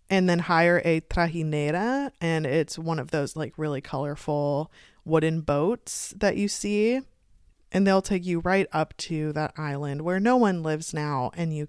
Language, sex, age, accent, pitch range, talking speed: English, female, 20-39, American, 150-180 Hz, 175 wpm